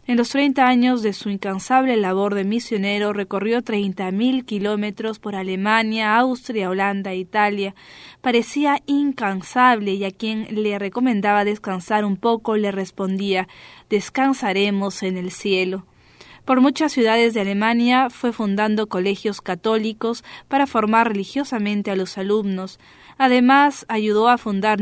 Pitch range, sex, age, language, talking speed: 200-240 Hz, female, 20-39, English, 130 wpm